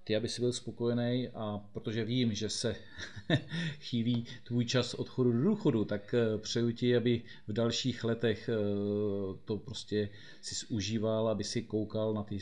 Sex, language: male, Czech